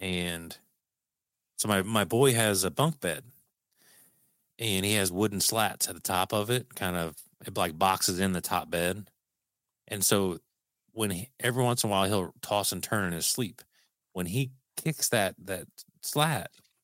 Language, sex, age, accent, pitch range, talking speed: English, male, 30-49, American, 90-110 Hz, 170 wpm